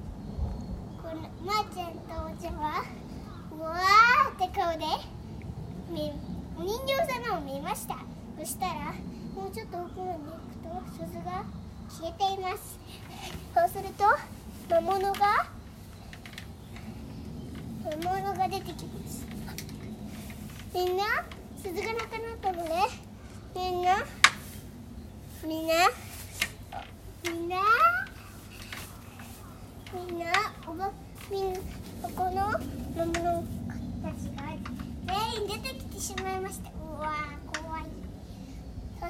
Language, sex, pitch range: Japanese, male, 345-425 Hz